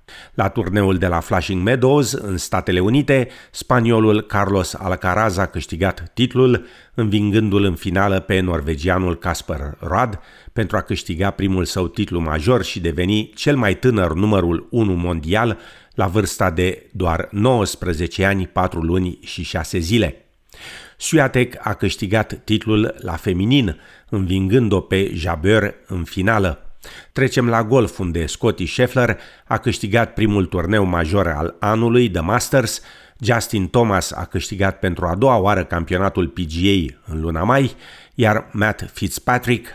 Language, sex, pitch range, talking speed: Romanian, male, 90-115 Hz, 135 wpm